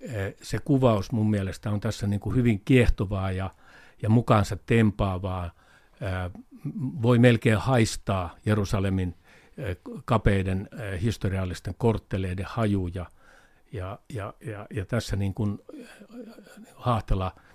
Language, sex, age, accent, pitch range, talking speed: Finnish, male, 50-69, native, 95-115 Hz, 100 wpm